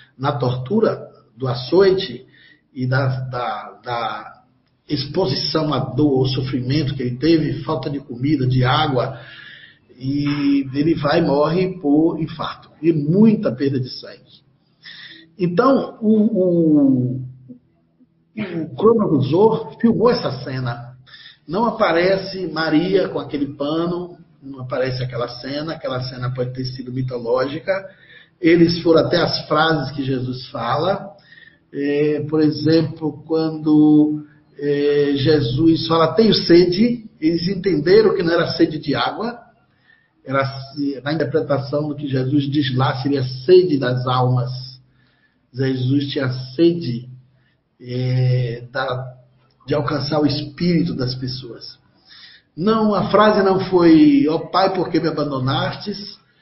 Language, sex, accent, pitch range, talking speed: Portuguese, male, Brazilian, 130-170 Hz, 120 wpm